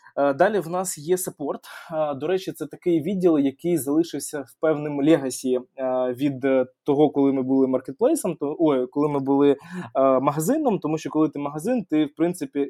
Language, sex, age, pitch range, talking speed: Ukrainian, male, 20-39, 140-175 Hz, 165 wpm